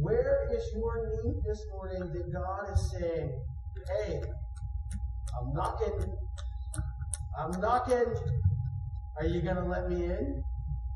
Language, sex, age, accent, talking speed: English, male, 40-59, American, 115 wpm